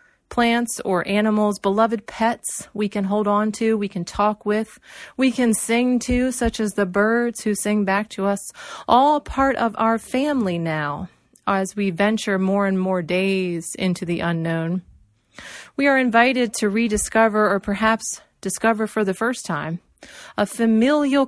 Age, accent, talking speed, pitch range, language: 30-49, American, 160 wpm, 195-230 Hz, English